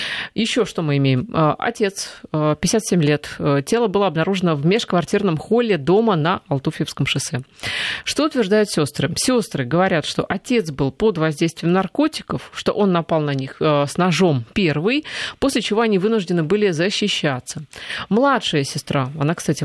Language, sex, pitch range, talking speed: Russian, female, 150-205 Hz, 140 wpm